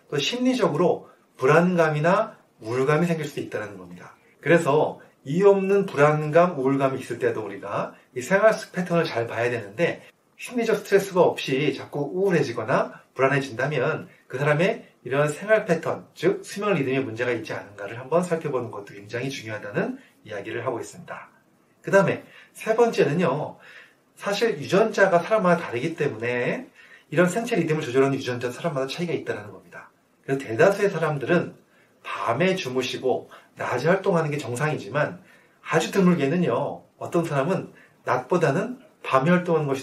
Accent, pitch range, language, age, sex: native, 135-195 Hz, Korean, 30-49, male